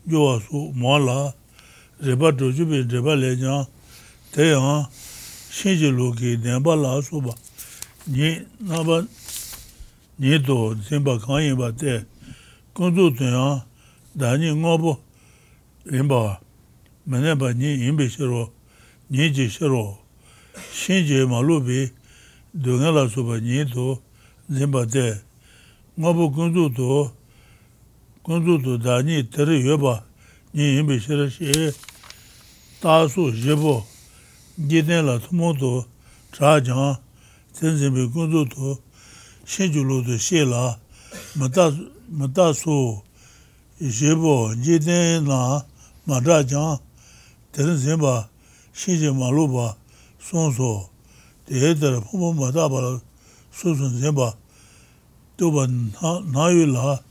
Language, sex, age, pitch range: English, male, 60-79, 125-155 Hz